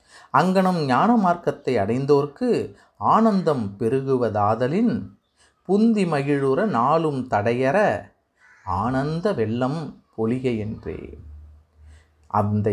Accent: native